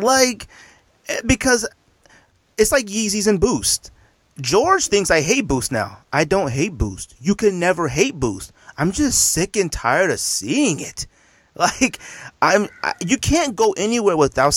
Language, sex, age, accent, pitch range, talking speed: English, male, 30-49, American, 120-200 Hz, 155 wpm